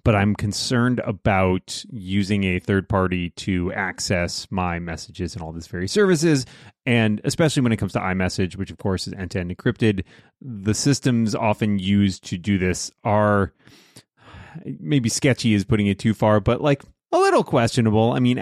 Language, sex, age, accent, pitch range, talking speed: English, male, 30-49, American, 95-130 Hz, 175 wpm